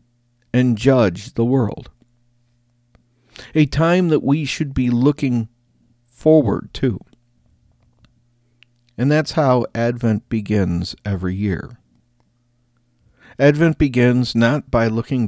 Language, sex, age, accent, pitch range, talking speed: English, male, 50-69, American, 110-125 Hz, 100 wpm